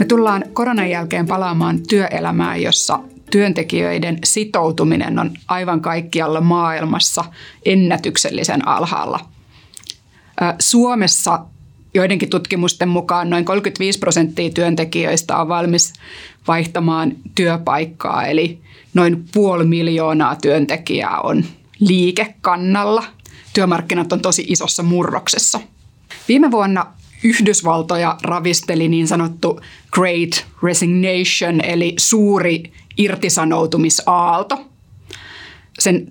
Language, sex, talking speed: Finnish, female, 85 wpm